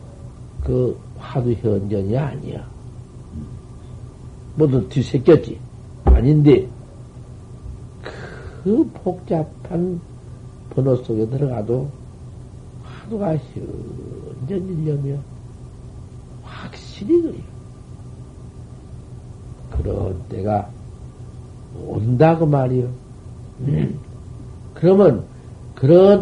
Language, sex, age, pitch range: Korean, male, 60-79, 115-135 Hz